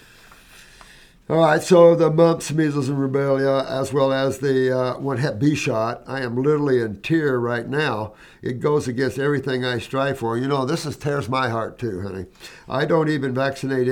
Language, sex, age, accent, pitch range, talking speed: English, male, 60-79, American, 120-150 Hz, 190 wpm